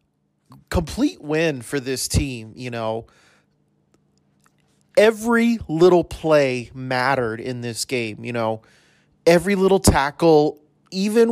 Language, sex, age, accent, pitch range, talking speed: English, male, 30-49, American, 125-180 Hz, 105 wpm